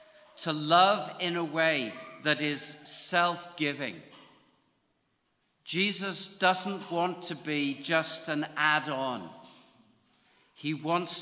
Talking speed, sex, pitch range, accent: 95 wpm, male, 150-180 Hz, British